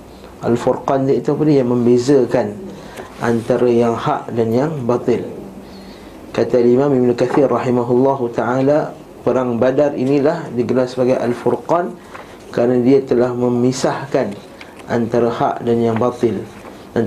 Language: Malay